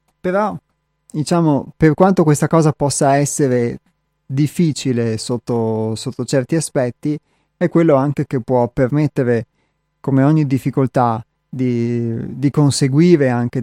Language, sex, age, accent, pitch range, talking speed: Italian, male, 30-49, native, 125-150 Hz, 115 wpm